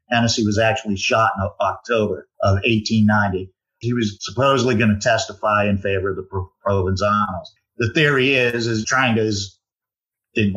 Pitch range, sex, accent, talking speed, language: 110-135 Hz, male, American, 150 wpm, English